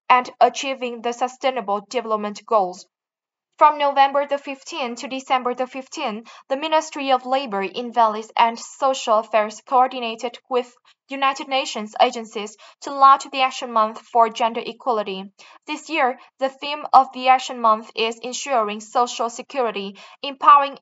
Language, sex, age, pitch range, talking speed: Vietnamese, female, 10-29, 225-270 Hz, 140 wpm